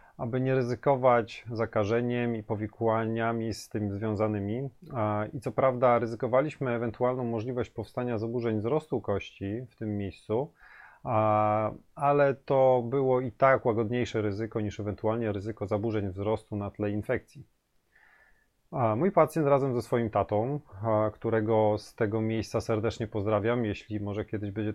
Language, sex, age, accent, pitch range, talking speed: Polish, male, 30-49, native, 110-130 Hz, 130 wpm